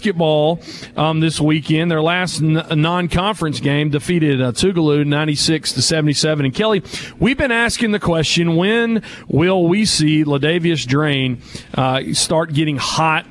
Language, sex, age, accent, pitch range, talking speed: English, male, 40-59, American, 140-175 Hz, 145 wpm